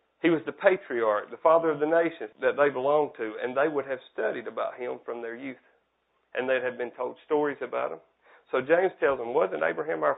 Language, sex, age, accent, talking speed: English, male, 40-59, American, 225 wpm